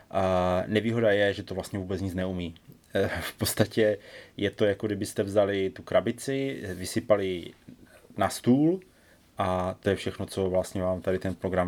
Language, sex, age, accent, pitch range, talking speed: Czech, male, 30-49, native, 90-105 Hz, 155 wpm